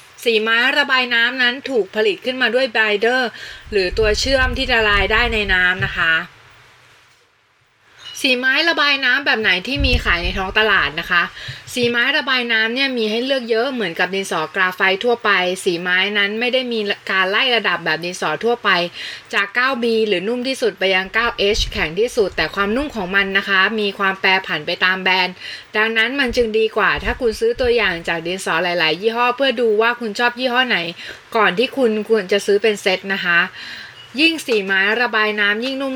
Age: 20-39